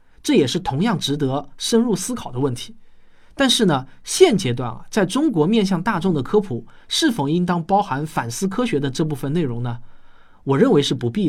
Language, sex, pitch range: Chinese, male, 135-215 Hz